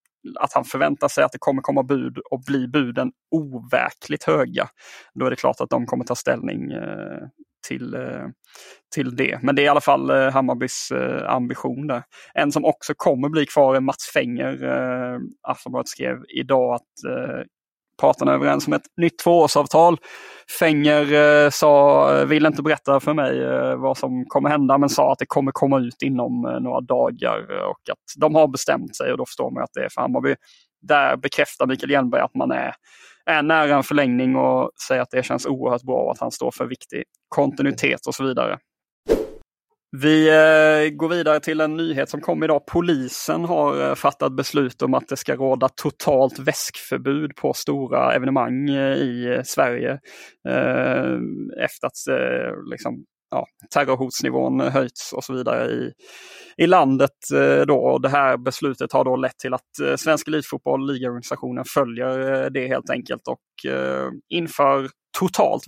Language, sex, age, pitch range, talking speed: Swedish, male, 20-39, 120-155 Hz, 165 wpm